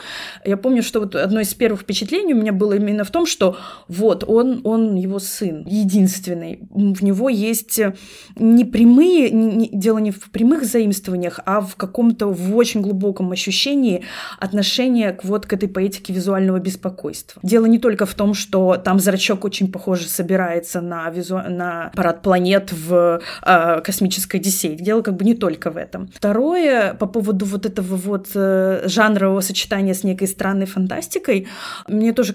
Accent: native